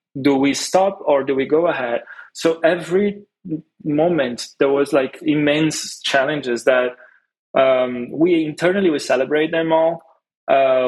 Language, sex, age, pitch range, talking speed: English, male, 20-39, 130-155 Hz, 140 wpm